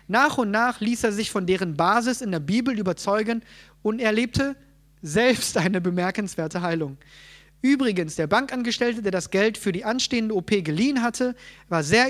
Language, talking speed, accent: German, 165 wpm, German